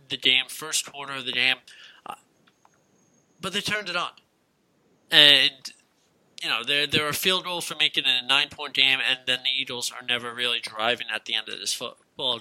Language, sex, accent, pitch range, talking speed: English, male, American, 120-145 Hz, 195 wpm